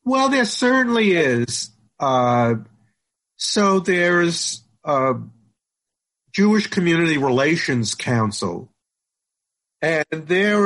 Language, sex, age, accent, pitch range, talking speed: English, male, 50-69, American, 120-180 Hz, 80 wpm